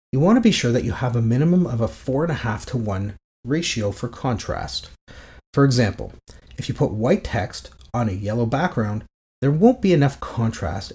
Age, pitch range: 30-49, 105-145 Hz